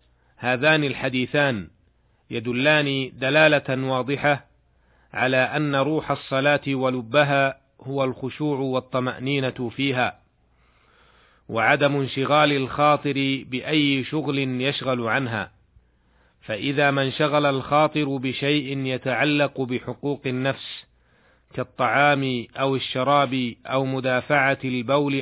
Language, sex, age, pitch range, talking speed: Arabic, male, 40-59, 125-145 Hz, 85 wpm